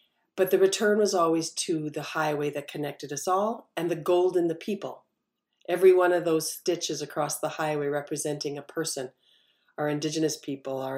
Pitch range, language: 150-190 Hz, English